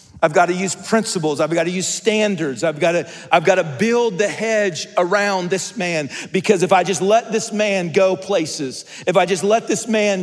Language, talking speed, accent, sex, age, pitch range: English, 200 wpm, American, male, 40-59, 165-210 Hz